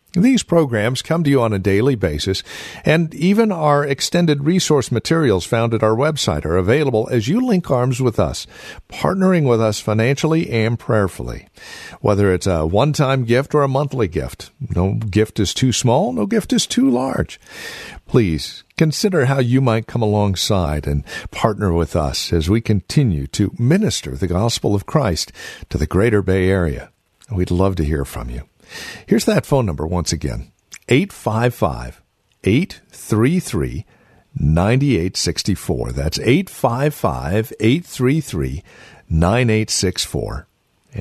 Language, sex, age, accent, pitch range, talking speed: English, male, 50-69, American, 95-140 Hz, 135 wpm